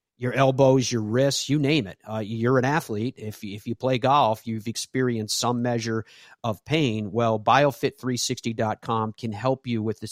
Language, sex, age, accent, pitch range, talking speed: English, male, 40-59, American, 105-130 Hz, 170 wpm